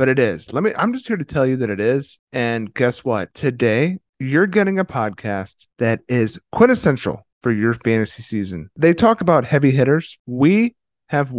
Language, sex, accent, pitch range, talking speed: English, male, American, 110-150 Hz, 190 wpm